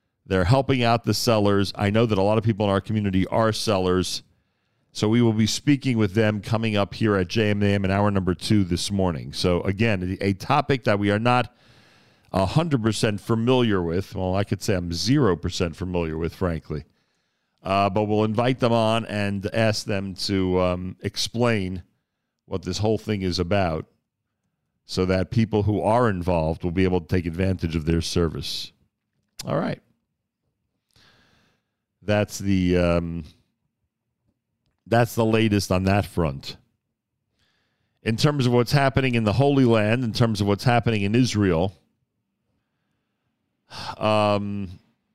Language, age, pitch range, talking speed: English, 50-69, 95-115 Hz, 155 wpm